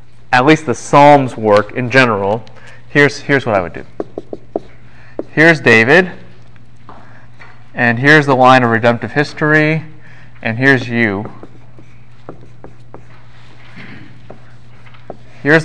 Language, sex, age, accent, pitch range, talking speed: English, male, 20-39, American, 120-155 Hz, 100 wpm